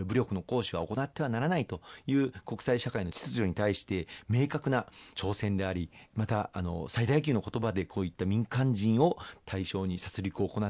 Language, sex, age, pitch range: Japanese, male, 40-59, 95-120 Hz